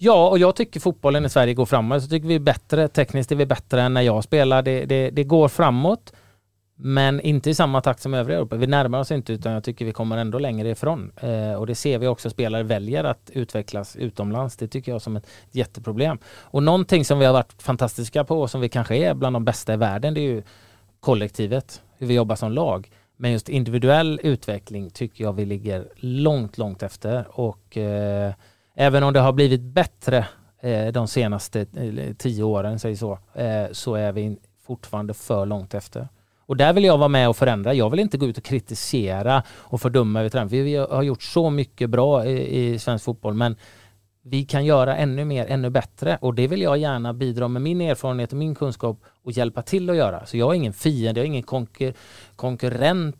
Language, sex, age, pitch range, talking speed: Swedish, male, 30-49, 110-140 Hz, 205 wpm